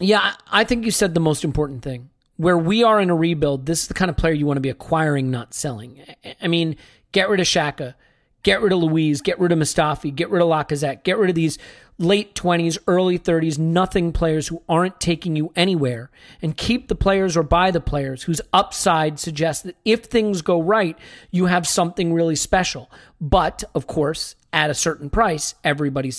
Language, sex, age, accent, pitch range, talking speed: English, male, 40-59, American, 155-195 Hz, 205 wpm